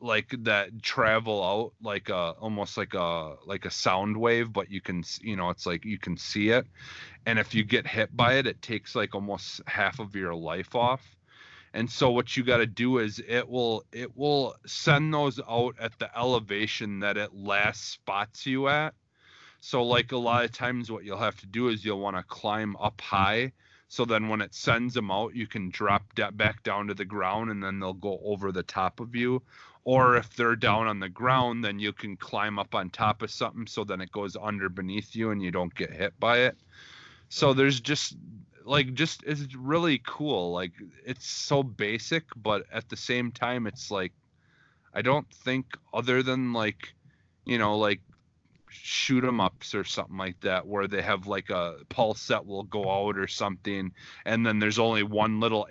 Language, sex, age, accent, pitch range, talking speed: English, male, 30-49, American, 100-120 Hz, 205 wpm